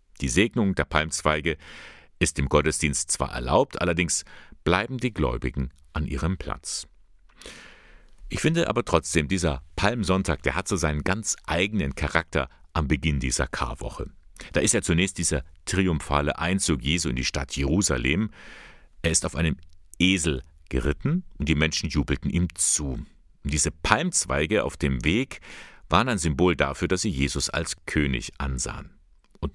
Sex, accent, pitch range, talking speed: male, German, 70-85 Hz, 150 wpm